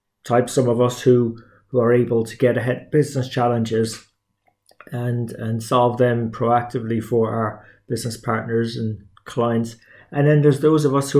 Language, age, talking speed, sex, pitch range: English, 20-39, 165 wpm, male, 115-135 Hz